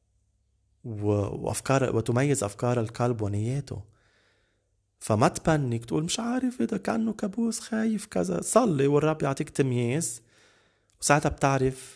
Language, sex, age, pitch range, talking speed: Arabic, male, 20-39, 105-125 Hz, 105 wpm